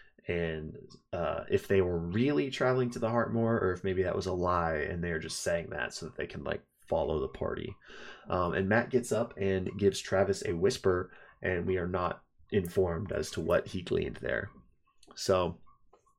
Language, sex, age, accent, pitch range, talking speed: English, male, 20-39, American, 95-115 Hz, 195 wpm